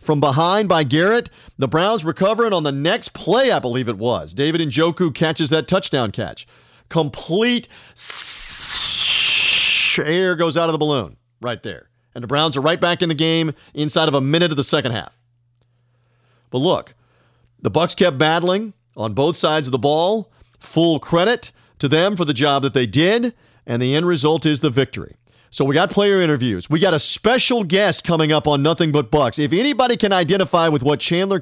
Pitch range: 135-175 Hz